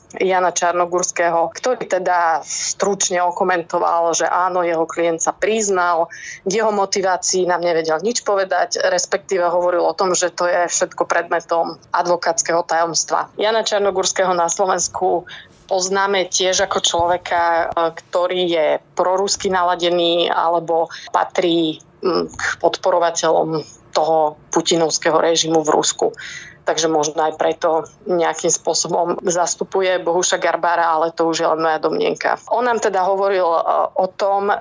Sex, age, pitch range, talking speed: female, 20-39, 165-185 Hz, 125 wpm